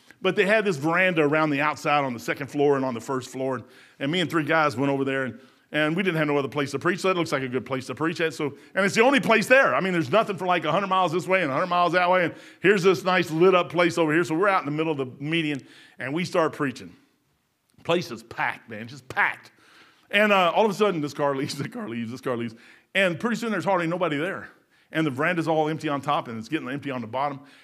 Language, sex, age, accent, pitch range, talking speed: English, male, 40-59, American, 145-225 Hz, 285 wpm